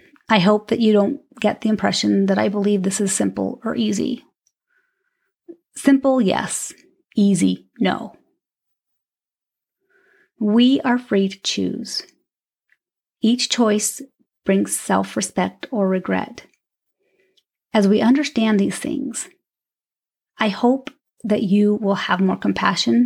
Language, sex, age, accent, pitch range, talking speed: English, female, 30-49, American, 200-260 Hz, 115 wpm